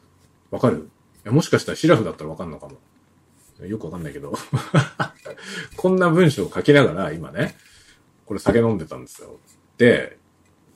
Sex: male